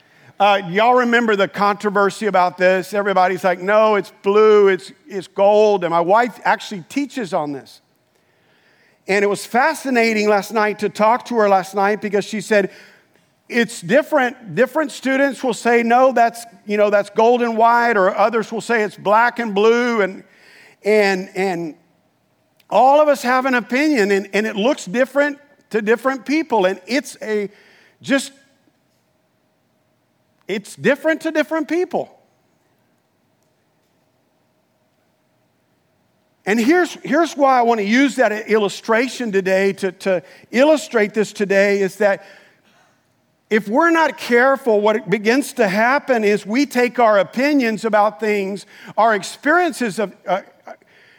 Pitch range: 200-255 Hz